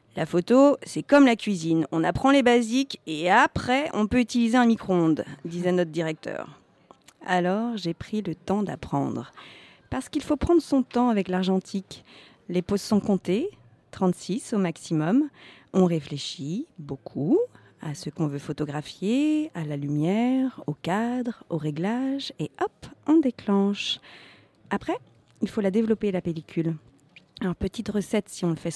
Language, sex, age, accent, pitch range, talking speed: French, female, 40-59, French, 170-235 Hz, 150 wpm